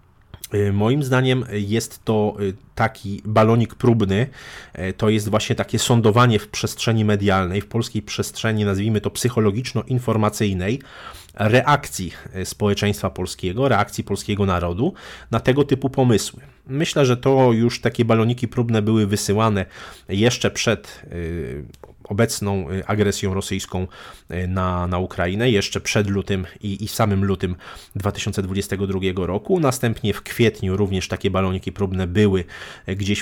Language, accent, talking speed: Polish, native, 120 wpm